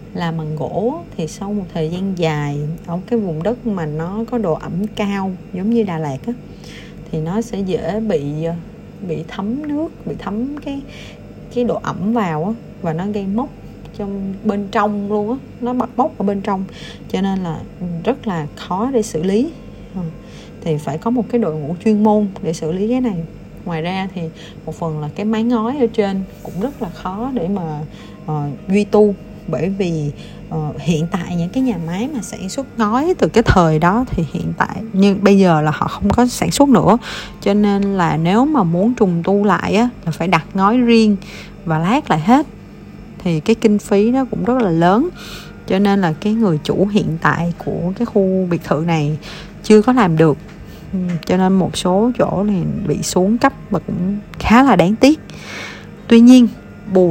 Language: Vietnamese